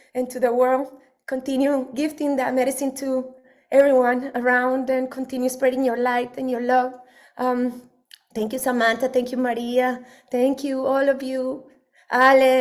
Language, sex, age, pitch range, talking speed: English, female, 20-39, 255-275 Hz, 150 wpm